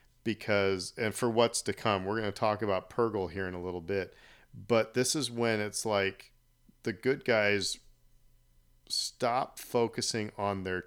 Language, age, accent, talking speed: English, 40-59, American, 165 wpm